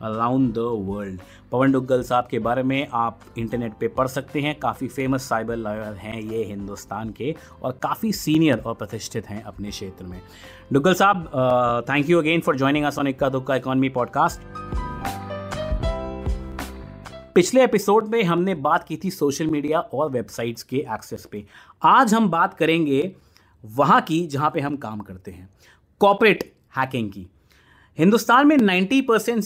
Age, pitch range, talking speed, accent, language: 30-49, 115-160 Hz, 145 wpm, native, Hindi